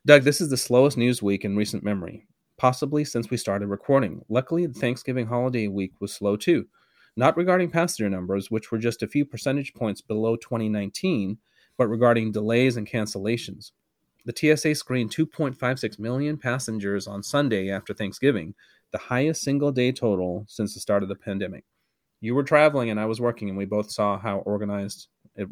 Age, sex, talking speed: 30-49, male, 180 wpm